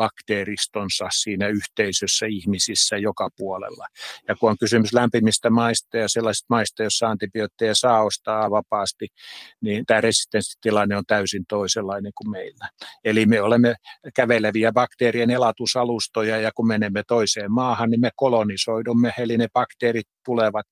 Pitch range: 110-120 Hz